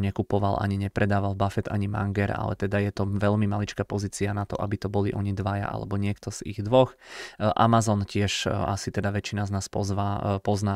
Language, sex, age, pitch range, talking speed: Czech, male, 20-39, 100-105 Hz, 190 wpm